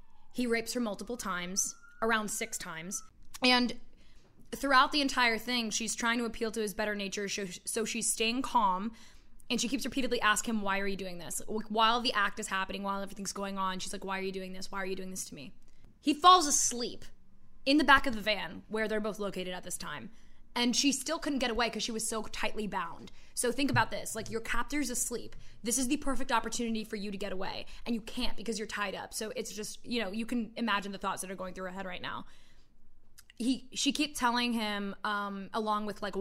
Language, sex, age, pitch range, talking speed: English, female, 20-39, 195-240 Hz, 230 wpm